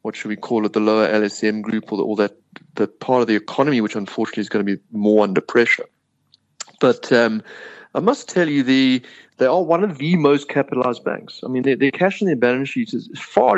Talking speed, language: 235 wpm, English